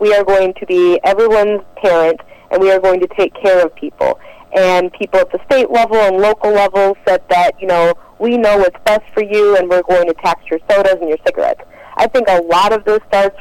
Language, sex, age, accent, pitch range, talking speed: English, female, 30-49, American, 165-200 Hz, 235 wpm